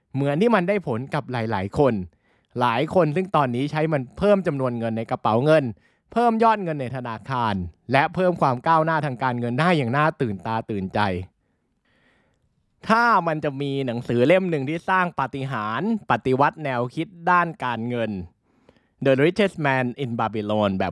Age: 20-39